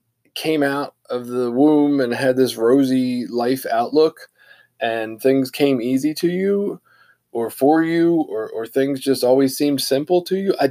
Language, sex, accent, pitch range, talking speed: English, male, American, 120-145 Hz, 170 wpm